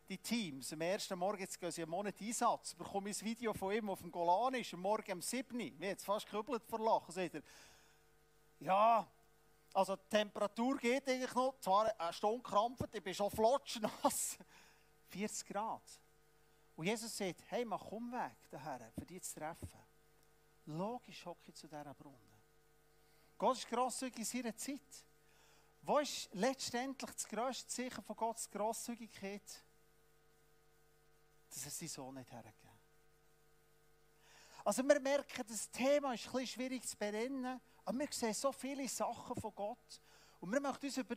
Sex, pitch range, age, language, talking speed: male, 170-245 Hz, 40-59, German, 165 wpm